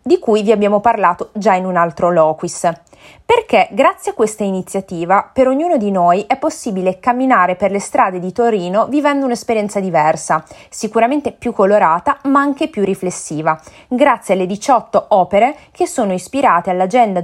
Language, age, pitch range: Italian, 20-39, 180-245 Hz